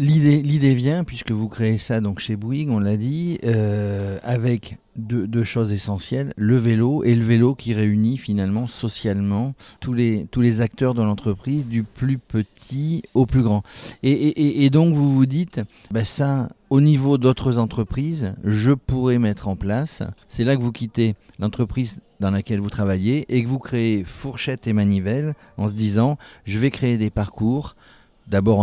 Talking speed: 180 wpm